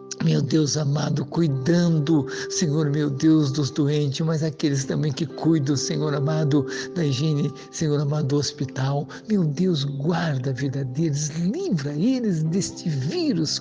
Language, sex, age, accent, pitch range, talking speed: Portuguese, male, 60-79, Brazilian, 135-155 Hz, 140 wpm